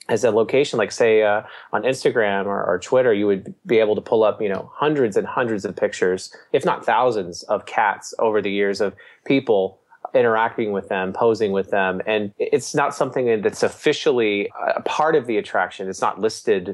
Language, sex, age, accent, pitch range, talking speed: English, male, 30-49, American, 100-125 Hz, 195 wpm